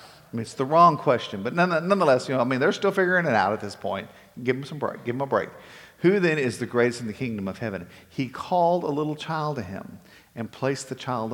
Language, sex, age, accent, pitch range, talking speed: English, male, 50-69, American, 110-150 Hz, 250 wpm